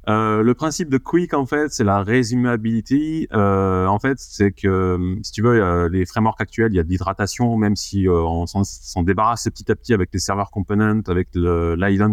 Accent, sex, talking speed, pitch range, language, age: French, male, 210 wpm, 90-115 Hz, French, 30-49